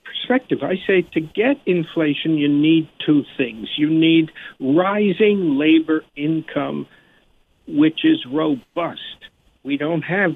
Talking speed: 120 wpm